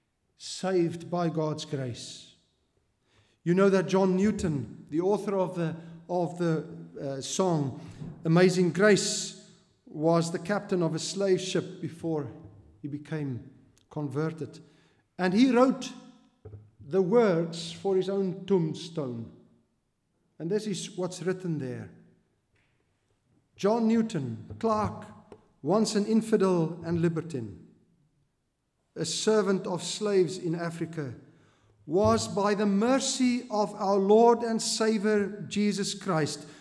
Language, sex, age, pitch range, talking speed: English, male, 50-69, 150-210 Hz, 115 wpm